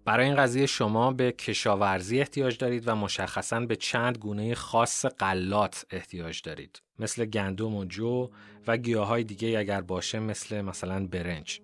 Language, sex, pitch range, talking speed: Persian, male, 100-120 Hz, 155 wpm